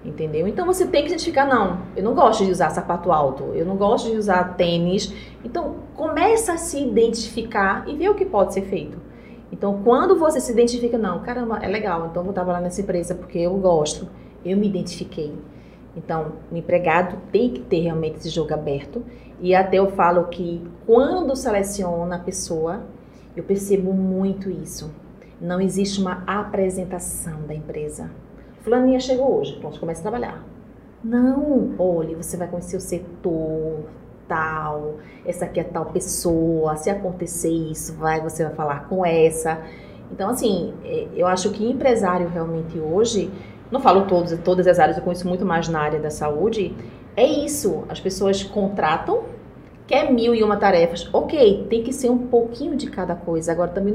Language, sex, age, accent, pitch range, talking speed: Portuguese, female, 30-49, Brazilian, 170-230 Hz, 170 wpm